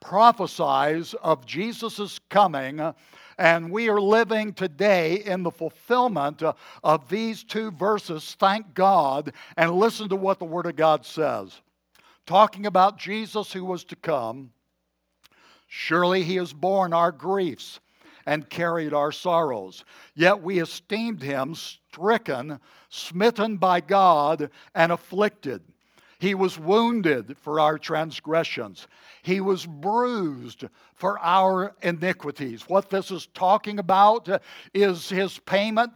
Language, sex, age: English, male, 60-79